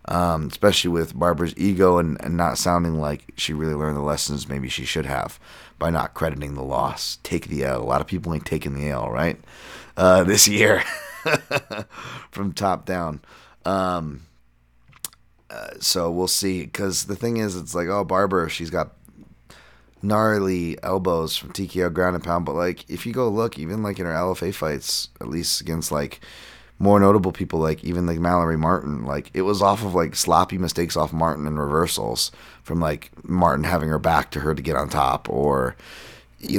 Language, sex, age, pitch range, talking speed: English, male, 30-49, 80-95 Hz, 185 wpm